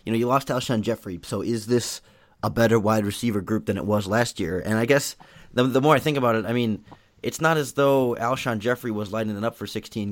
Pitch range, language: 100-120 Hz, English